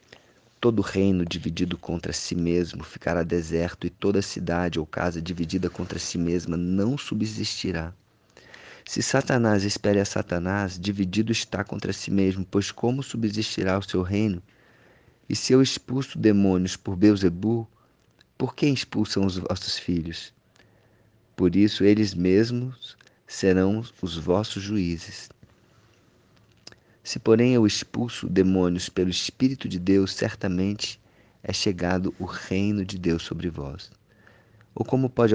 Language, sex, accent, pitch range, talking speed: Portuguese, male, Brazilian, 90-110 Hz, 130 wpm